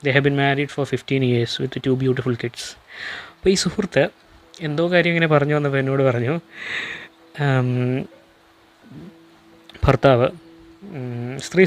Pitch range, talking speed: 140-190 Hz, 115 wpm